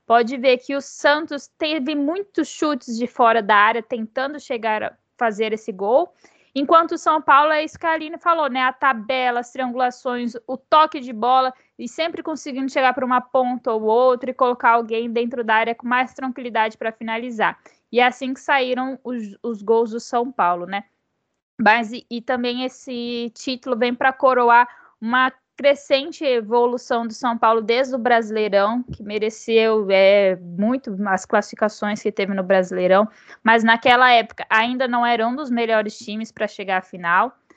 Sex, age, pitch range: female, 10-29, 230-275 Hz